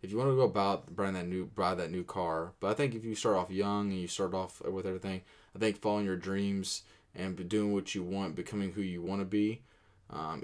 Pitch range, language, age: 95-120 Hz, English, 20-39